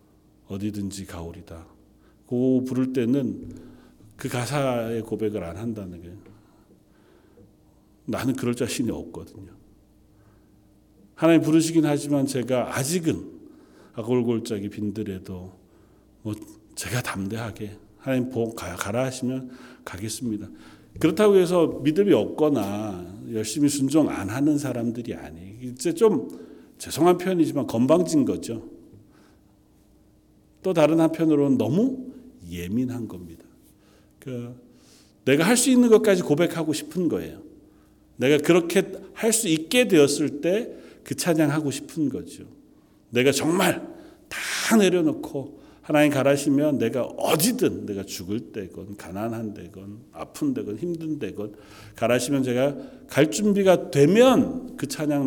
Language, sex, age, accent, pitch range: Korean, male, 40-59, native, 105-160 Hz